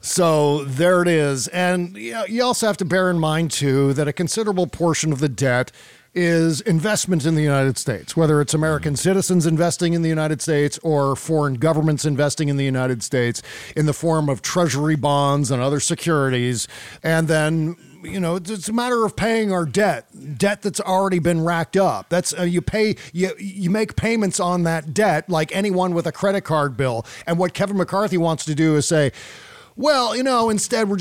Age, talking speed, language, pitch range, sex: 50-69, 195 wpm, English, 150-190 Hz, male